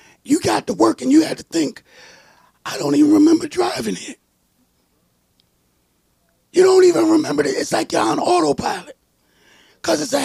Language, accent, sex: English, American, male